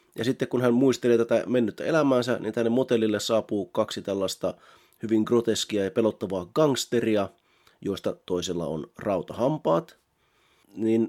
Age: 30-49